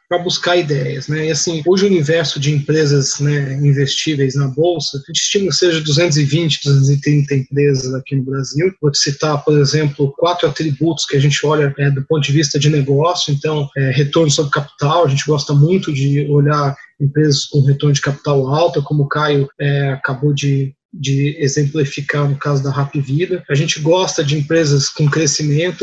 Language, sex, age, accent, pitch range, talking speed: Portuguese, male, 20-39, Brazilian, 145-160 Hz, 190 wpm